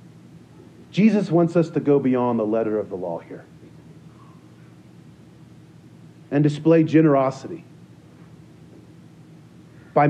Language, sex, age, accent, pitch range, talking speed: English, male, 40-59, American, 125-160 Hz, 95 wpm